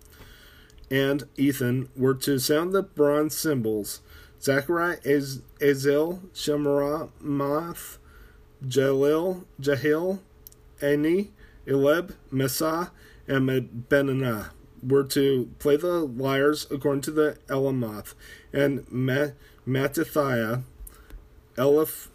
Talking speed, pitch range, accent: 85 wpm, 125-150 Hz, American